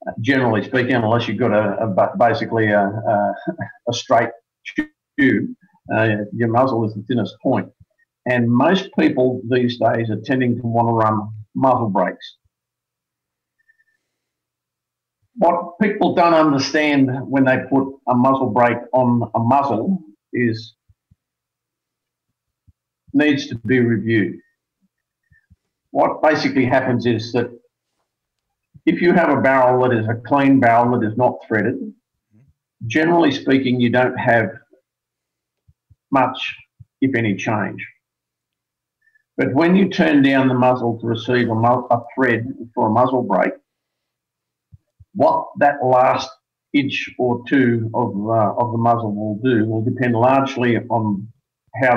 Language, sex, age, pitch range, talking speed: English, male, 50-69, 115-140 Hz, 130 wpm